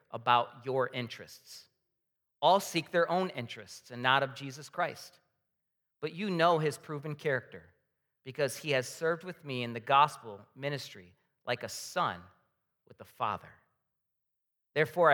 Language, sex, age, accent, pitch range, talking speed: English, male, 40-59, American, 125-165 Hz, 145 wpm